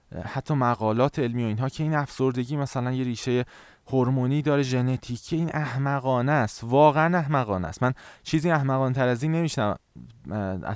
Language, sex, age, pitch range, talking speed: Persian, male, 20-39, 105-150 Hz, 150 wpm